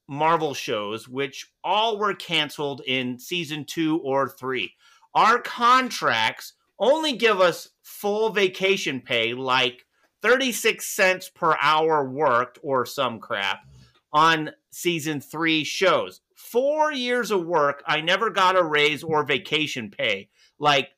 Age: 30-49